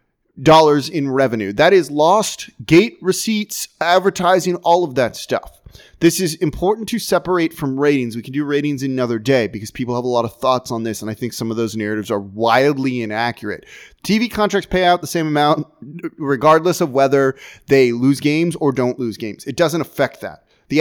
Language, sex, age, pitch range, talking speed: English, male, 30-49, 125-170 Hz, 195 wpm